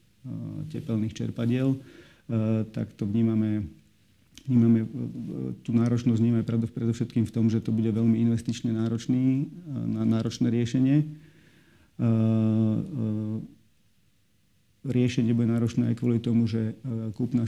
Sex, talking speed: male, 95 wpm